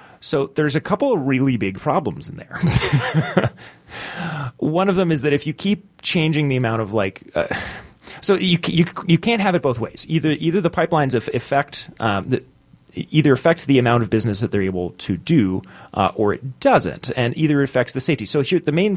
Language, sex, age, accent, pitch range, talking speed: English, male, 30-49, American, 115-165 Hz, 200 wpm